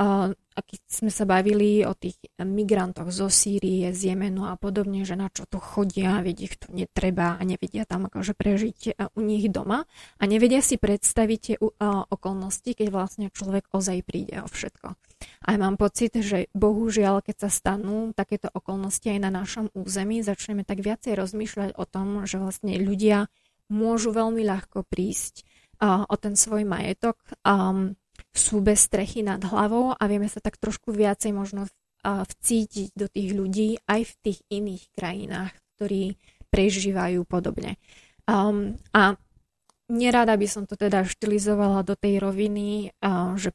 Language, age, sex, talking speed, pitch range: Slovak, 20-39, female, 155 wpm, 195-210 Hz